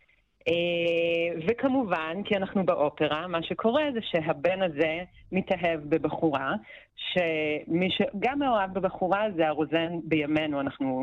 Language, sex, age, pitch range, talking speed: Hebrew, female, 30-49, 145-185 Hz, 100 wpm